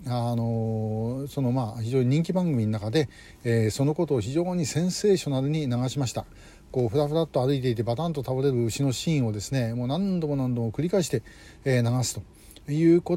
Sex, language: male, Japanese